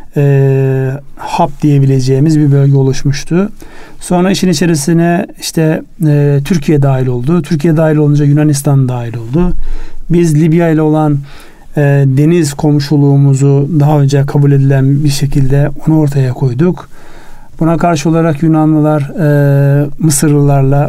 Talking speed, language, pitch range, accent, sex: 120 wpm, Turkish, 140-165 Hz, native, male